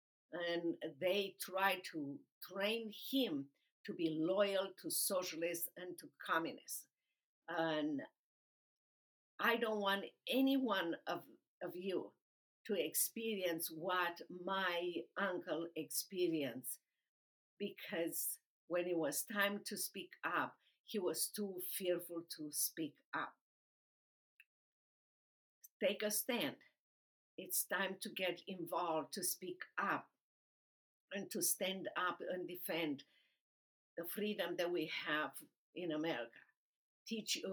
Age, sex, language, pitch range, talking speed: 50-69, female, English, 170-210 Hz, 110 wpm